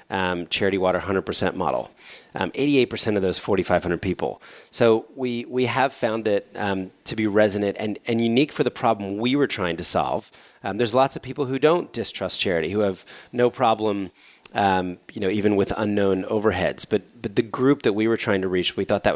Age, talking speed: 30-49, 205 wpm